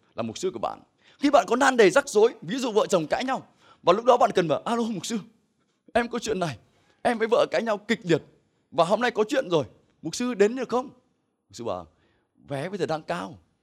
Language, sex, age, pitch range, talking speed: Vietnamese, male, 20-39, 140-235 Hz, 250 wpm